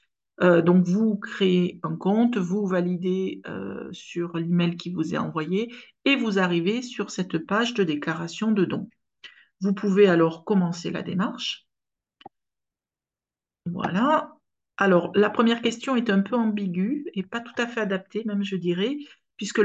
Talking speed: 155 wpm